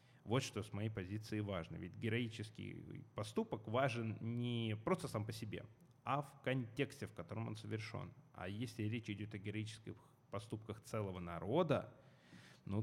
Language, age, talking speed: Russian, 20-39, 150 wpm